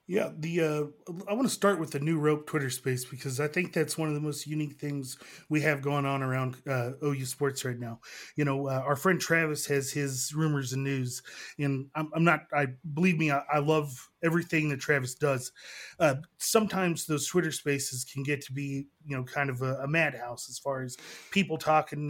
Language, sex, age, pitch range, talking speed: English, male, 30-49, 140-170 Hz, 215 wpm